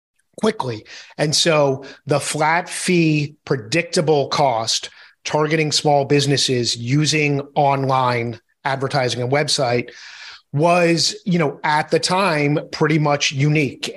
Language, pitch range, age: English, 140-160 Hz, 30-49